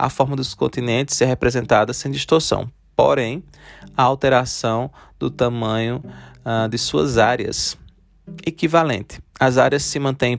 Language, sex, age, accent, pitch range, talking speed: Portuguese, male, 20-39, Brazilian, 105-135 Hz, 125 wpm